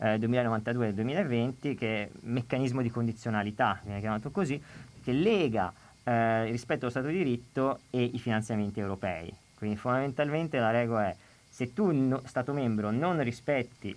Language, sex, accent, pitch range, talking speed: Italian, male, native, 110-140 Hz, 160 wpm